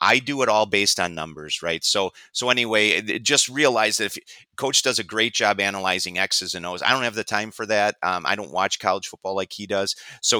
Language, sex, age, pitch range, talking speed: English, male, 40-59, 90-110 Hz, 235 wpm